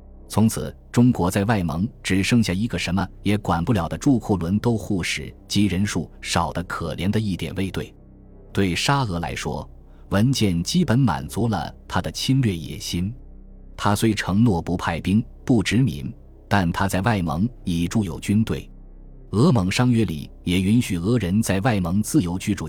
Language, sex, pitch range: Chinese, male, 85-115 Hz